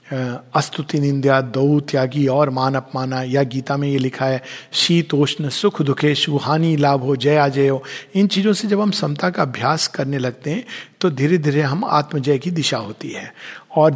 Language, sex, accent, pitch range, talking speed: Hindi, male, native, 145-210 Hz, 175 wpm